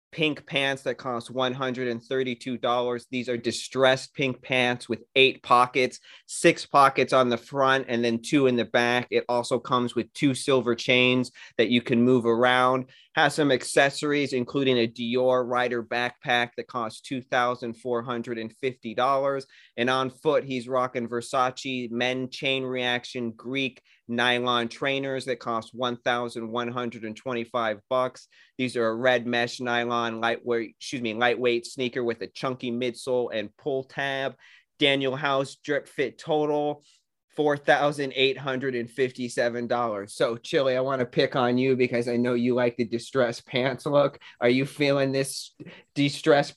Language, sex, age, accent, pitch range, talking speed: English, male, 30-49, American, 120-135 Hz, 140 wpm